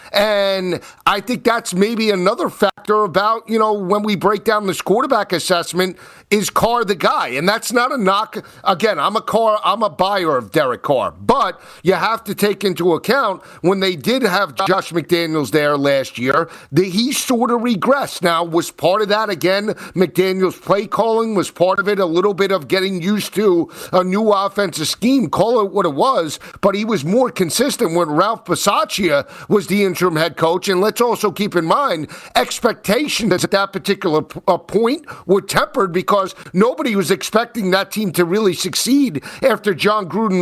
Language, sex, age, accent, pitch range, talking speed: English, male, 40-59, American, 180-215 Hz, 185 wpm